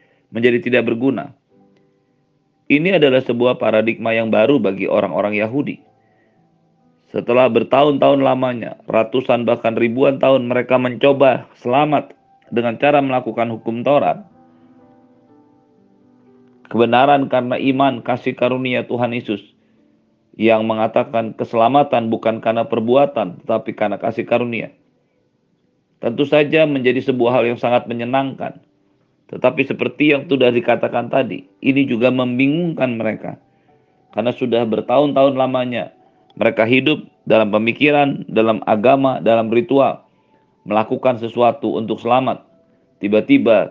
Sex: male